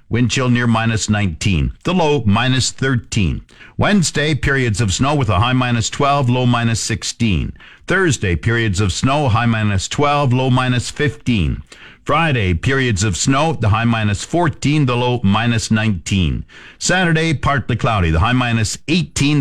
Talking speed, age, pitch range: 155 wpm, 50-69, 100-140 Hz